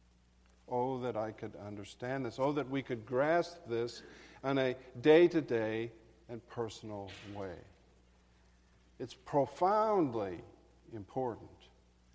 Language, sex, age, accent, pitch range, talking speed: English, male, 50-69, American, 105-170 Hz, 105 wpm